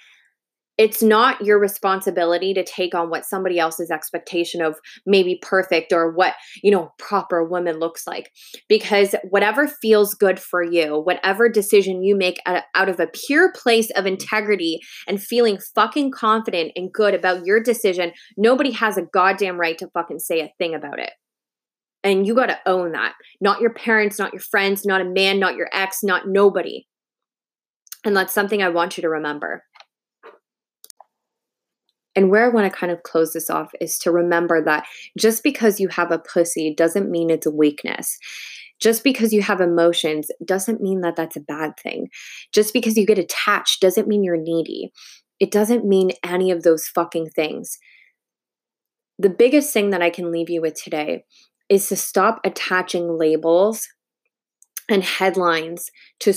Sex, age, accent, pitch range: female, 20-39, American, 170-210 Hz